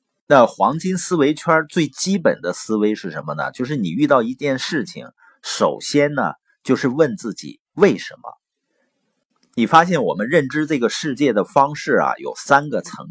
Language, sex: Chinese, male